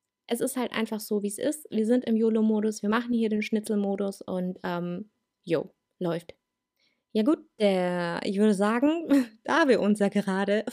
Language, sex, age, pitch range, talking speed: German, female, 20-39, 190-235 Hz, 180 wpm